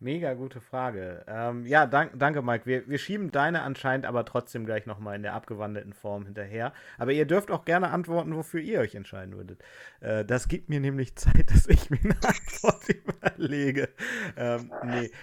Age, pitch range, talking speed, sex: 30-49, 110-140 Hz, 185 wpm, male